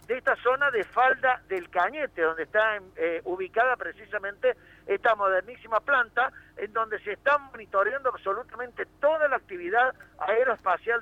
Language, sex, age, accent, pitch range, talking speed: Spanish, male, 50-69, Argentinian, 205-280 Hz, 135 wpm